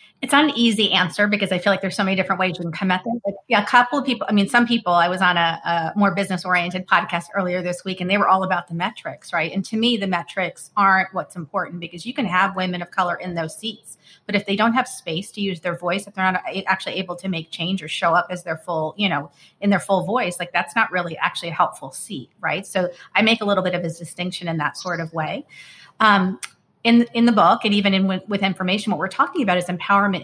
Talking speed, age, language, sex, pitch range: 270 wpm, 30-49, English, female, 175-205 Hz